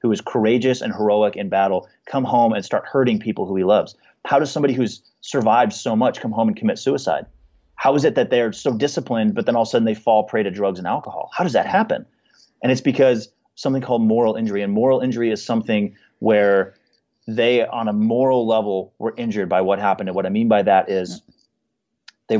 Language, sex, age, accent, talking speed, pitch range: English, male, 30-49, American, 220 wpm, 105-125 Hz